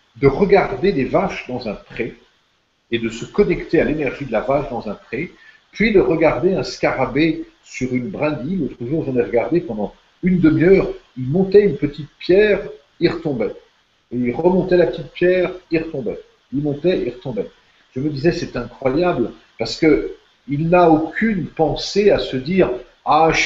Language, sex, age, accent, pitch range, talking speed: French, male, 50-69, French, 130-185 Hz, 175 wpm